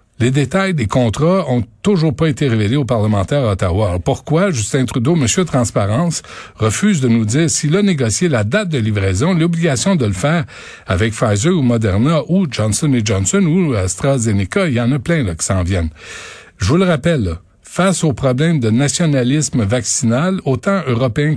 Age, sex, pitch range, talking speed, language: 60-79, male, 110-150 Hz, 185 wpm, French